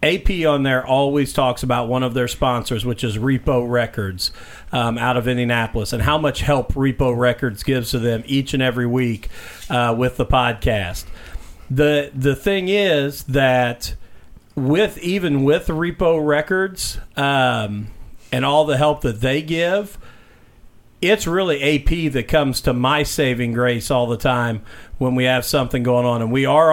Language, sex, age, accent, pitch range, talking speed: English, male, 40-59, American, 120-150 Hz, 165 wpm